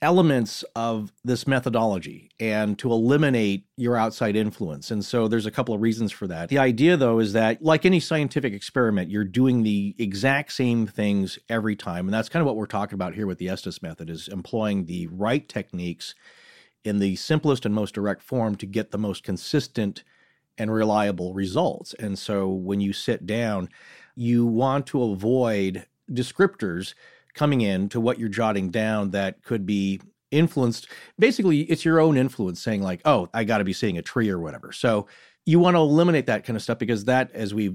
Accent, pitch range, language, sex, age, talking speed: American, 100-130 Hz, English, male, 40-59, 190 wpm